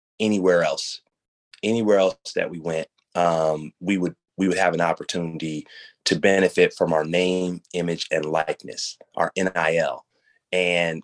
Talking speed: 140 wpm